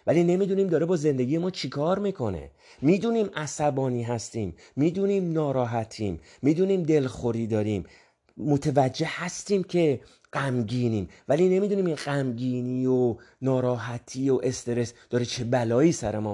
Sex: male